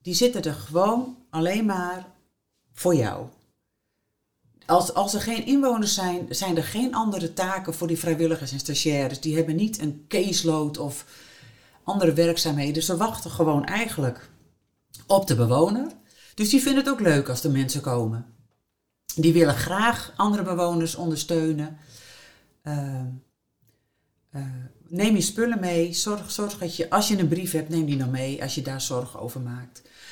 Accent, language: Dutch, Dutch